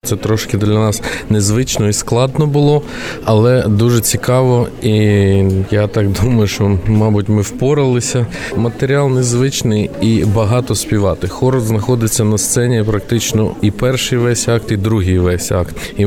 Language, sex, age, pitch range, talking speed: Ukrainian, male, 20-39, 105-120 Hz, 140 wpm